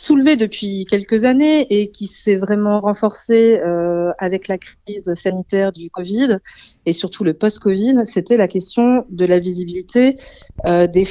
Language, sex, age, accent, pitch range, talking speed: French, female, 30-49, French, 190-225 Hz, 150 wpm